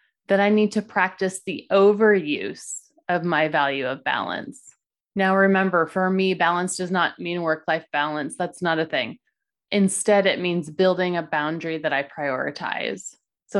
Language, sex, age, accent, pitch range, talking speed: English, female, 30-49, American, 165-205 Hz, 160 wpm